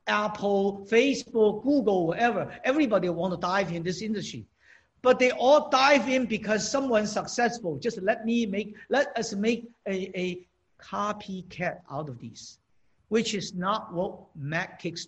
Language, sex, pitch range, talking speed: English, male, 170-225 Hz, 145 wpm